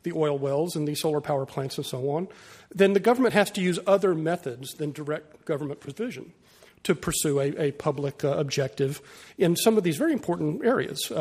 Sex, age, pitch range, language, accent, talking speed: male, 40-59, 150-195 Hz, English, American, 200 wpm